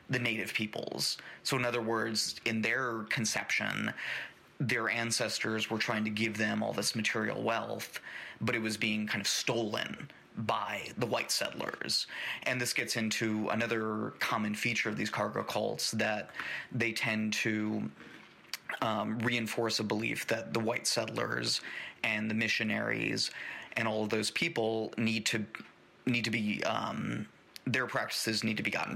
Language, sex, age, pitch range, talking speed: English, male, 30-49, 105-115 Hz, 155 wpm